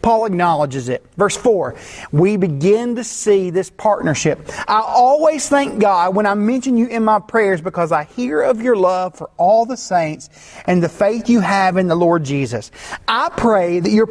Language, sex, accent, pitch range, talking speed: English, male, American, 180-230 Hz, 190 wpm